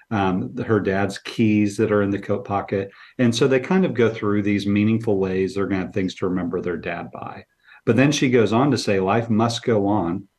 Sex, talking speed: male, 235 wpm